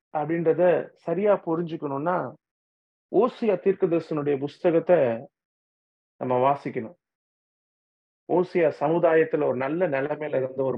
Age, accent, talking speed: 40-59, Indian, 80 wpm